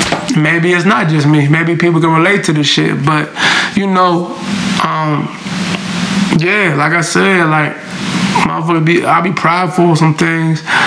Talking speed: 155 wpm